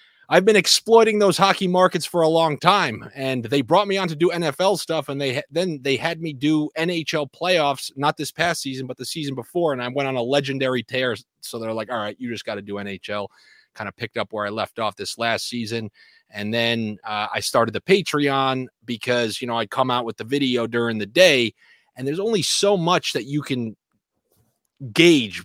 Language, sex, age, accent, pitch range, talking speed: English, male, 30-49, American, 110-145 Hz, 220 wpm